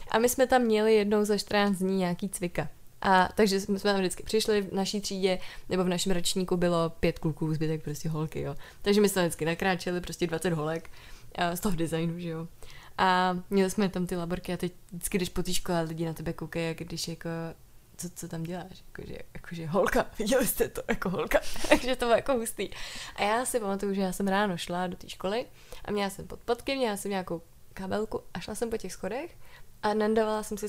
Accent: native